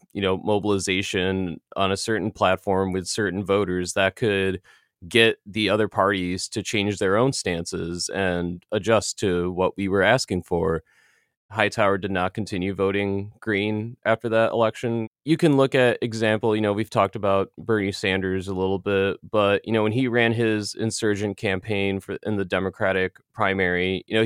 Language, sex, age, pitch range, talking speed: English, male, 20-39, 95-110 Hz, 170 wpm